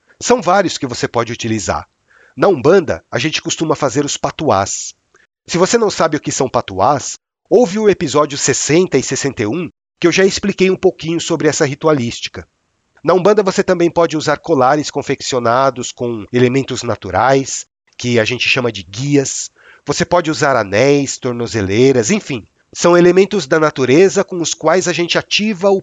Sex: male